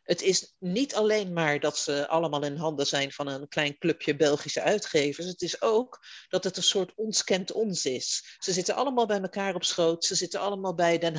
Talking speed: 210 wpm